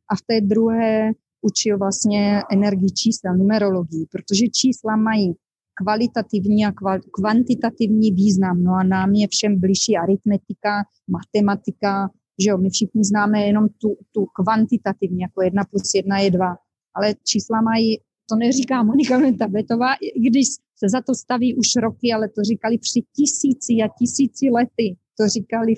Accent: native